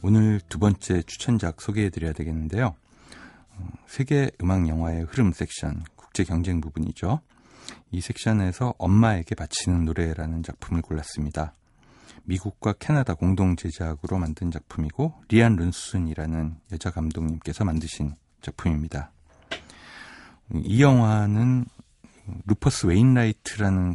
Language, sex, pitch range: Korean, male, 80-110 Hz